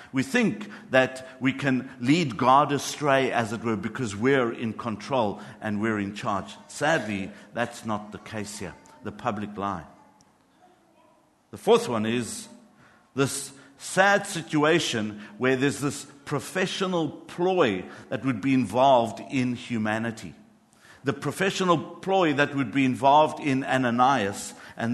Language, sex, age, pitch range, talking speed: English, male, 50-69, 125-170 Hz, 135 wpm